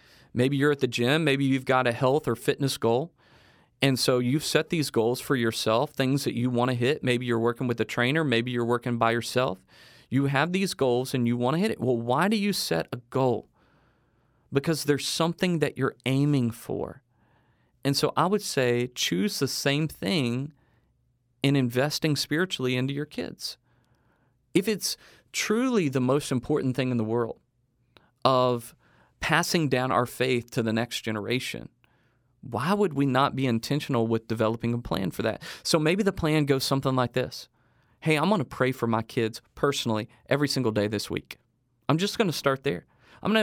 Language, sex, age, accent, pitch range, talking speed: English, male, 40-59, American, 120-150 Hz, 190 wpm